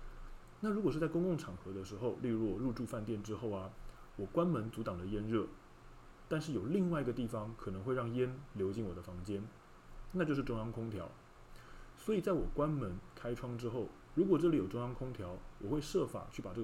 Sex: male